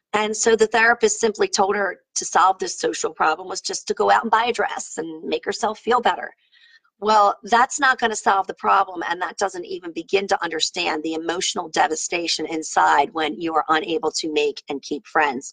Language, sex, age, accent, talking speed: English, female, 40-59, American, 210 wpm